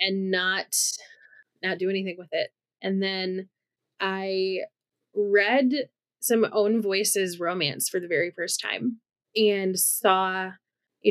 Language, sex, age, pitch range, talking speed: English, female, 20-39, 185-230 Hz, 125 wpm